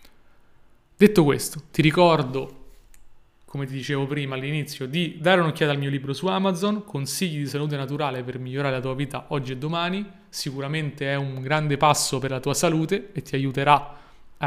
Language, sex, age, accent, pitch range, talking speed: Italian, male, 30-49, native, 140-170 Hz, 175 wpm